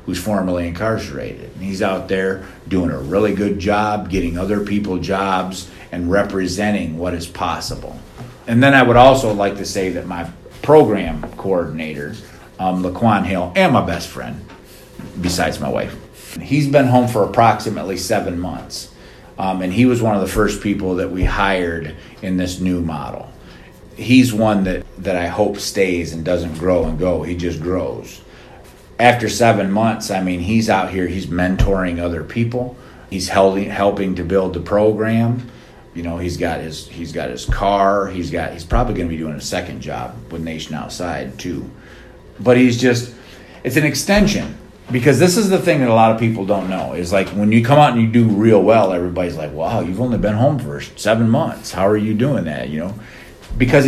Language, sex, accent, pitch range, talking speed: English, male, American, 90-115 Hz, 190 wpm